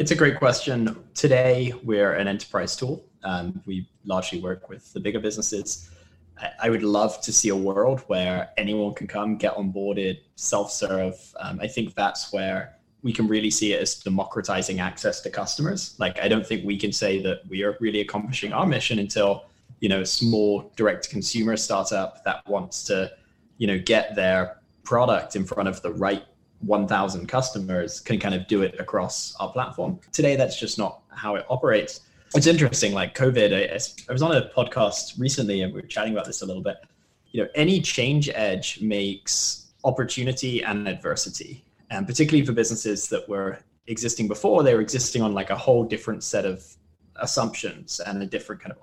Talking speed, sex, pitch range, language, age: 185 wpm, male, 100-120 Hz, English, 20-39